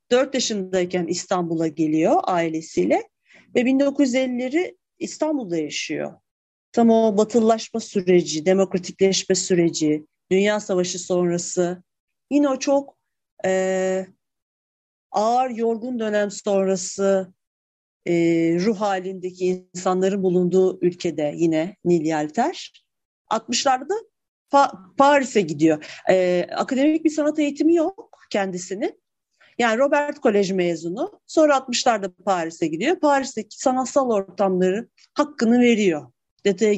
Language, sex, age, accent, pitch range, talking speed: Turkish, female, 40-59, native, 180-260 Hz, 100 wpm